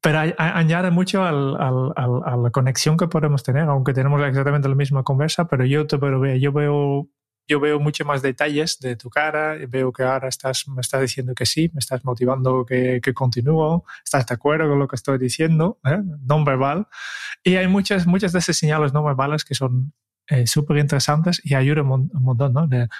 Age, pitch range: 20-39, 130-150 Hz